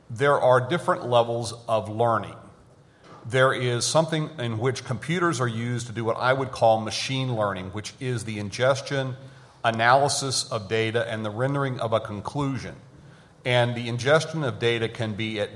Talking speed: 165 wpm